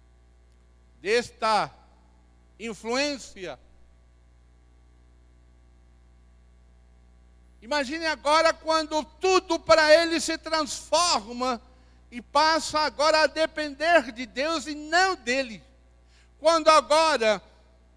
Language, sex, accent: Portuguese, male, Brazilian